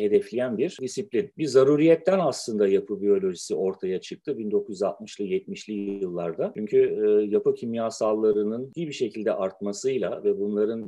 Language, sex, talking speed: Turkish, male, 120 wpm